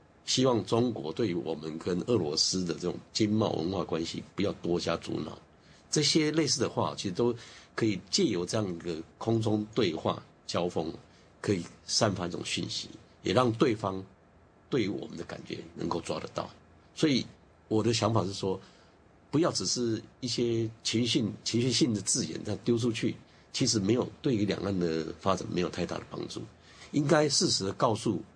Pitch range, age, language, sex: 85-115 Hz, 50-69, English, male